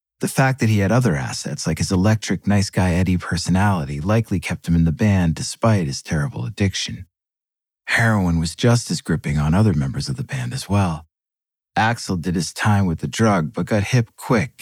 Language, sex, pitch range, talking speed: English, male, 85-115 Hz, 195 wpm